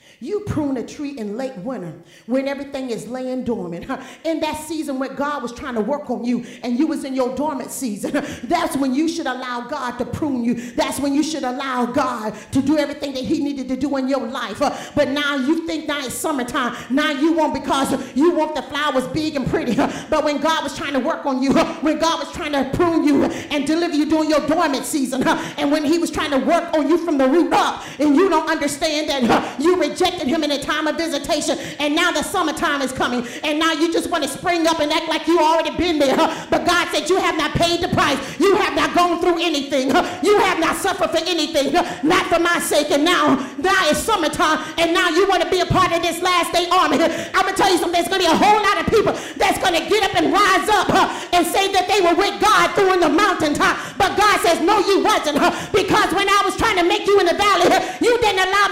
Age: 40-59